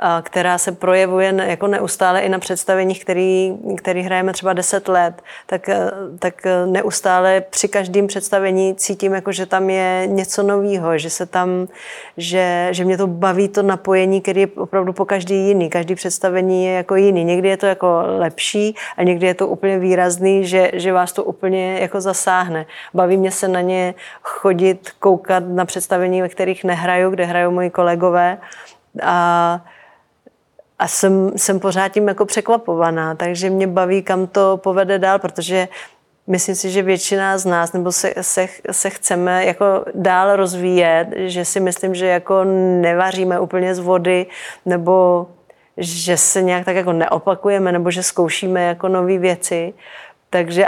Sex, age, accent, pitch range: female, 30-49, native, 180-195 Hz